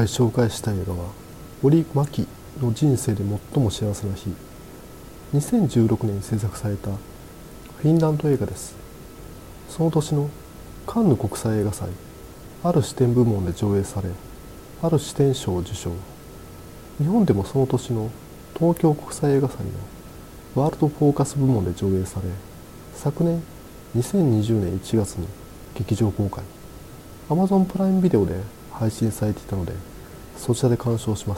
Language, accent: Japanese, native